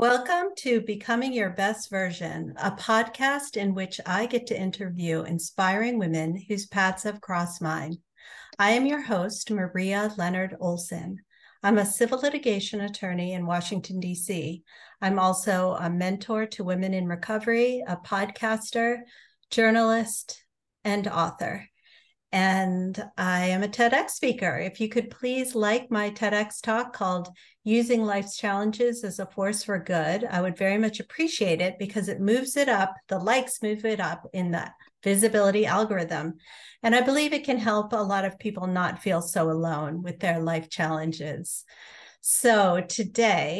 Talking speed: 155 wpm